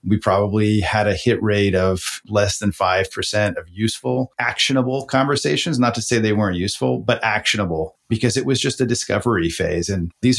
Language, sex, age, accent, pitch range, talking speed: English, male, 40-59, American, 105-120 Hz, 180 wpm